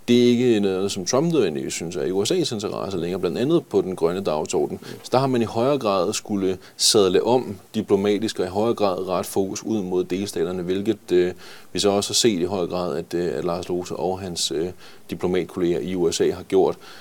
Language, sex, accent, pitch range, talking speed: Danish, male, native, 90-105 Hz, 215 wpm